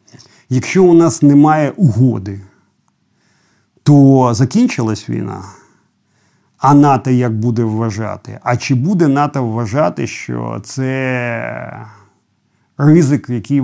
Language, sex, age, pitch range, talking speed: Ukrainian, male, 50-69, 115-145 Hz, 95 wpm